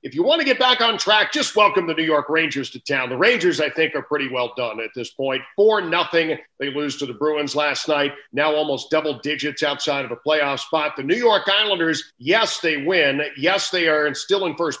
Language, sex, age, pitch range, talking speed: English, male, 50-69, 140-175 Hz, 235 wpm